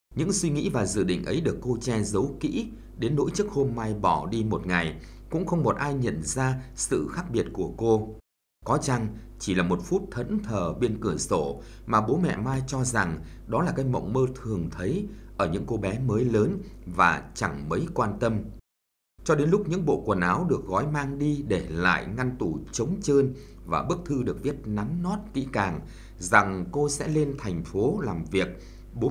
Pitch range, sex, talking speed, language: 95-140 Hz, male, 210 wpm, Vietnamese